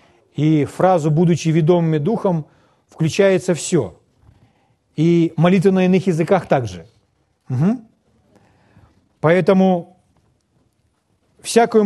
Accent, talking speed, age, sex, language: native, 80 wpm, 40-59, male, Russian